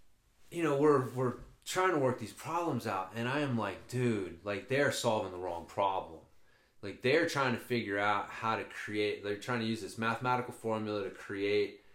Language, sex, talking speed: English, male, 195 wpm